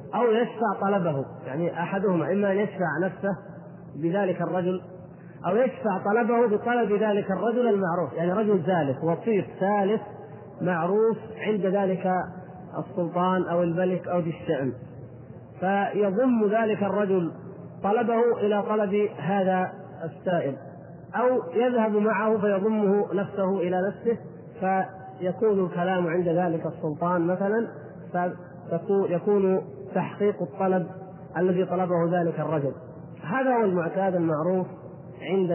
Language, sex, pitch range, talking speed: Arabic, male, 170-200 Hz, 110 wpm